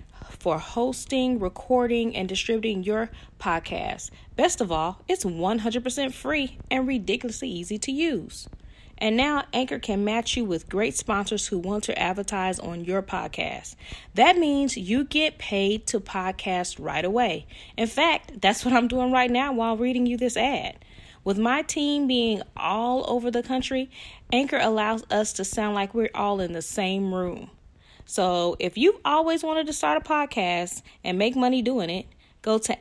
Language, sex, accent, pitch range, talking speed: English, female, American, 195-255 Hz, 170 wpm